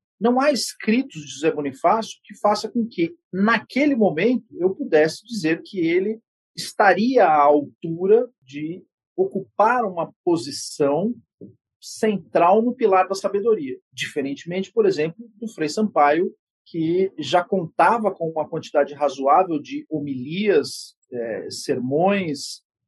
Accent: Brazilian